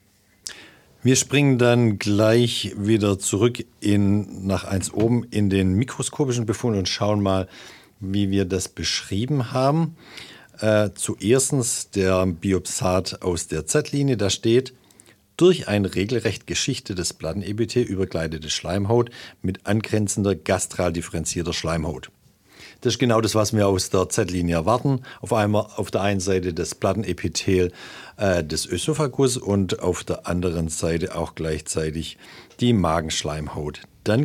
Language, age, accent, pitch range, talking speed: German, 50-69, German, 90-120 Hz, 130 wpm